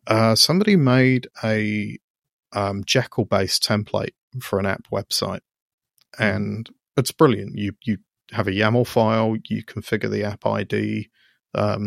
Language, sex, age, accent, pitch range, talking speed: English, male, 30-49, British, 105-115 Hz, 135 wpm